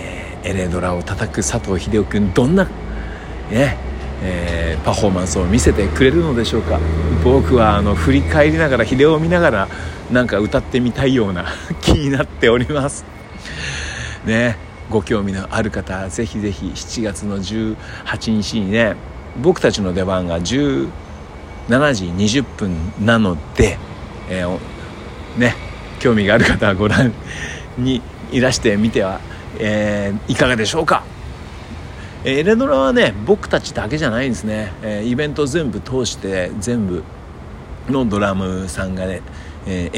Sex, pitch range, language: male, 90-115 Hz, Japanese